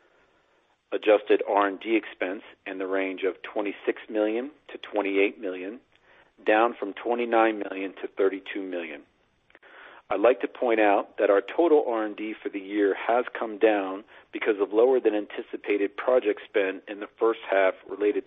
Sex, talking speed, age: male, 150 wpm, 50-69